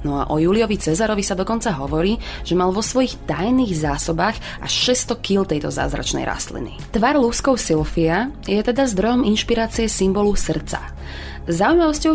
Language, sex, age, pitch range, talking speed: Slovak, female, 20-39, 165-230 Hz, 150 wpm